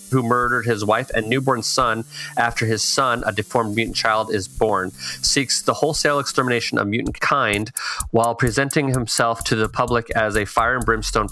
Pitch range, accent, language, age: 110-135 Hz, American, English, 30-49